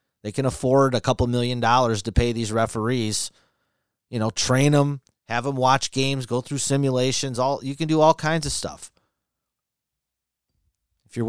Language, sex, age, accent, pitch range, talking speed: English, male, 30-49, American, 100-140 Hz, 170 wpm